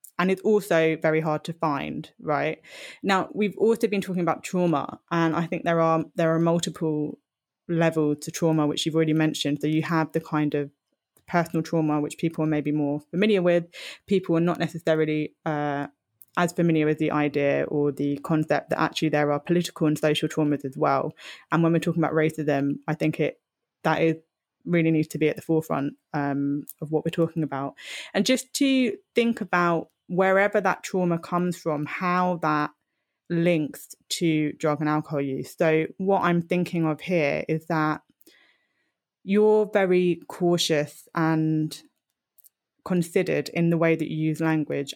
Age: 10-29